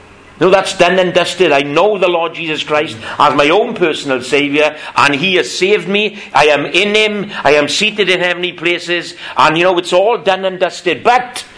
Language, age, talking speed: English, 60-79, 205 wpm